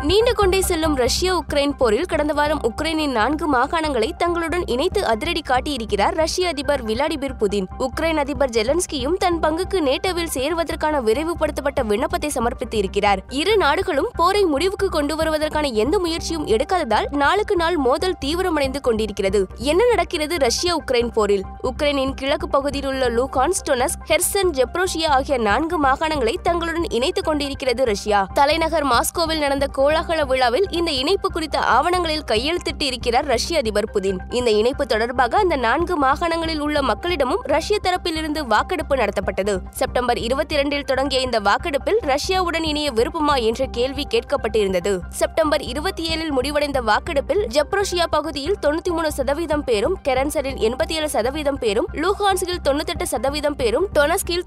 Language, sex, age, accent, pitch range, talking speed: Tamil, female, 20-39, native, 265-350 Hz, 125 wpm